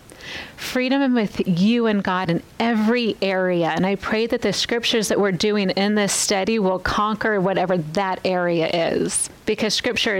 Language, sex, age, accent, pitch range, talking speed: English, female, 40-59, American, 185-220 Hz, 165 wpm